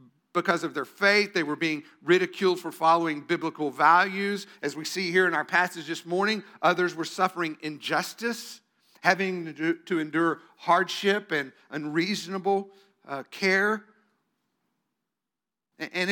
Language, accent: English, American